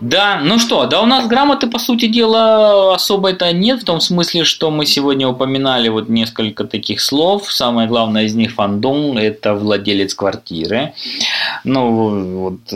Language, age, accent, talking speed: Russian, 20-39, native, 160 wpm